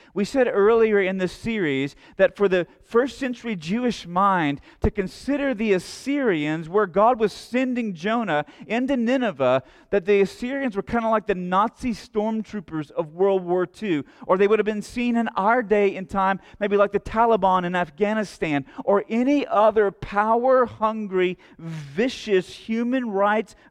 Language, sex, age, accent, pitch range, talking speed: English, male, 40-59, American, 180-230 Hz, 155 wpm